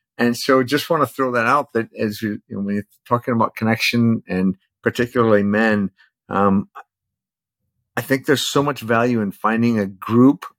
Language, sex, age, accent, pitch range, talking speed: English, male, 50-69, American, 110-125 Hz, 180 wpm